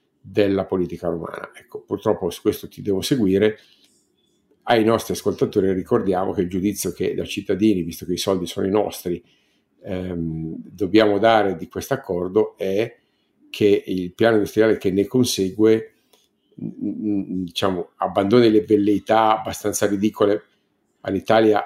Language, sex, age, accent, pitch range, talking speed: Italian, male, 50-69, native, 95-110 Hz, 130 wpm